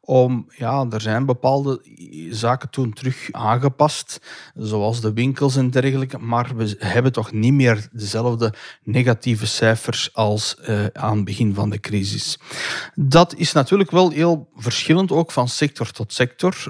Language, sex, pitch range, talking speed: Dutch, male, 110-140 Hz, 150 wpm